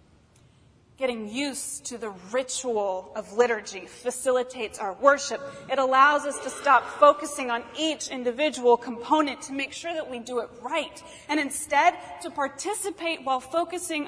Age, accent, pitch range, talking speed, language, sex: 30-49, American, 245-320 Hz, 145 wpm, English, female